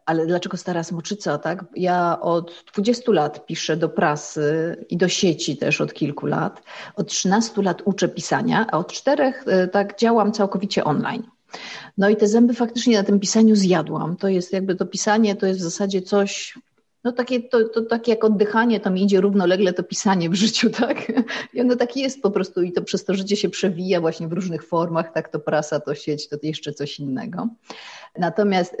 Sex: female